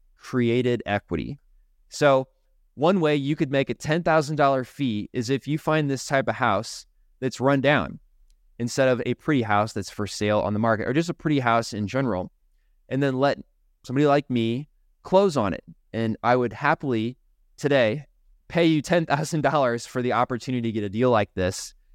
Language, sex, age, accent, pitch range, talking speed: English, male, 20-39, American, 100-135 Hz, 190 wpm